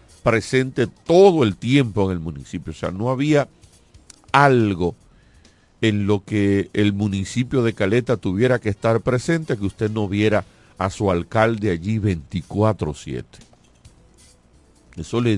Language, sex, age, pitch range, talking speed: Spanish, male, 50-69, 90-115 Hz, 135 wpm